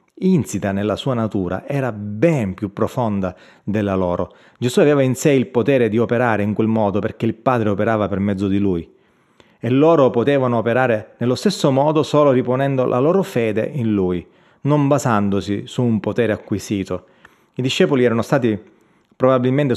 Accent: native